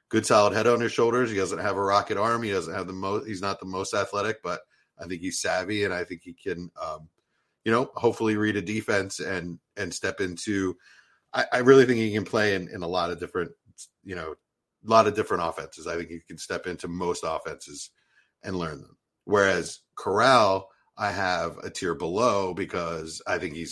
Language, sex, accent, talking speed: English, male, American, 215 wpm